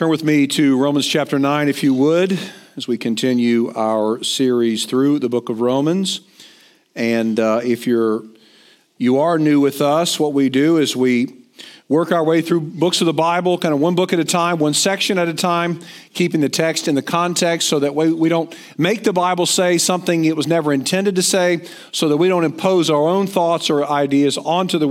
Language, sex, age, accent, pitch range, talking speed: English, male, 50-69, American, 135-170 Hz, 210 wpm